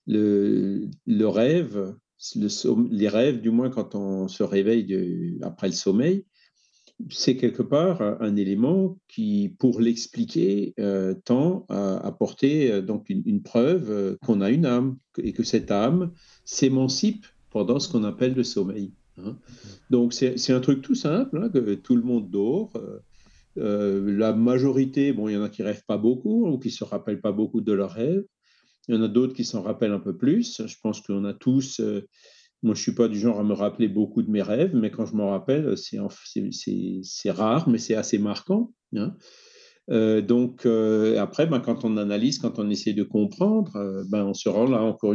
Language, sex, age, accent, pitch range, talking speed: French, male, 50-69, French, 105-135 Hz, 200 wpm